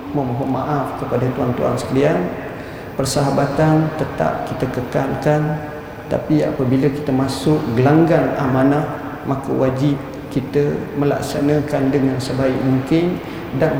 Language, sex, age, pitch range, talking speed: Malay, male, 50-69, 125-145 Hz, 105 wpm